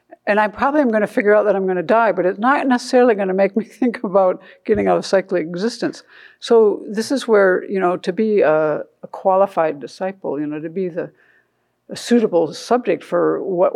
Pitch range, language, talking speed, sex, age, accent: 160-215 Hz, English, 205 wpm, female, 60-79, American